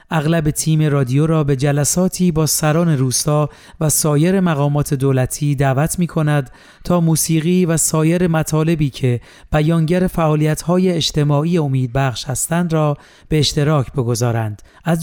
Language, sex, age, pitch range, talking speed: Persian, male, 40-59, 135-160 Hz, 125 wpm